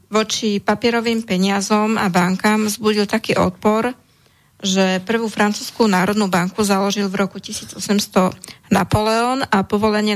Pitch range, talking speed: 190-215 Hz, 120 wpm